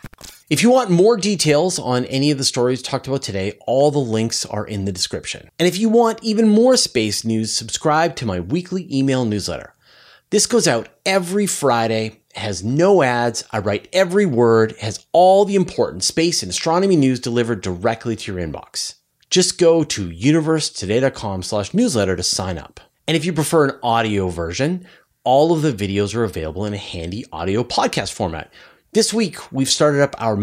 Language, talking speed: English, 180 wpm